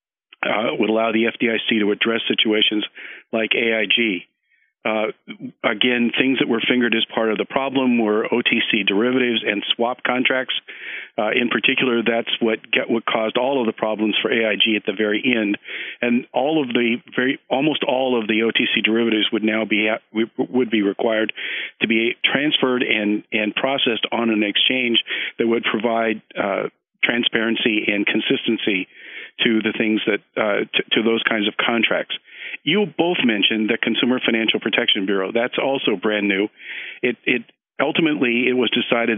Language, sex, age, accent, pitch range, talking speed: English, male, 50-69, American, 110-125 Hz, 160 wpm